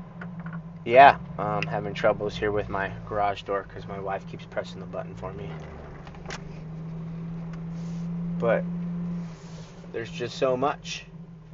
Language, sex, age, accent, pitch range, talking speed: English, male, 20-39, American, 110-165 Hz, 125 wpm